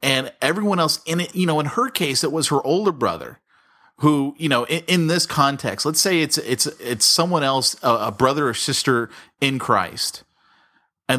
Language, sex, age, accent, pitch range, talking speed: English, male, 30-49, American, 110-150 Hz, 195 wpm